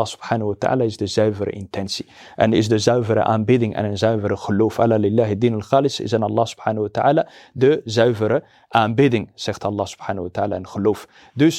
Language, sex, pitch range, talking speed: Dutch, male, 105-130 Hz, 190 wpm